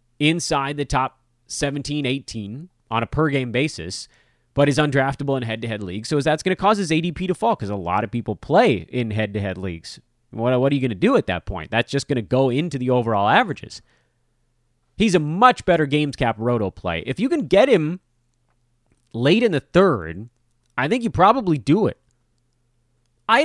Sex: male